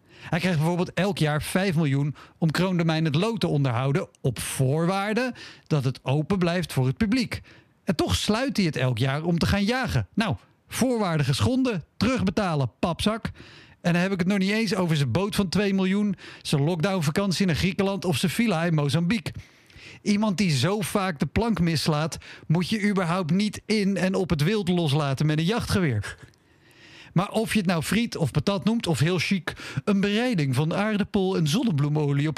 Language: Dutch